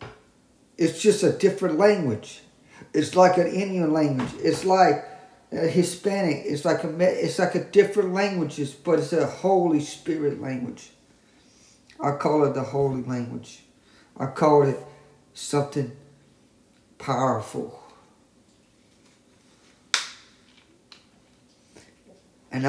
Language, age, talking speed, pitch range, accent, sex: English, 50-69, 100 wpm, 150-210 Hz, American, male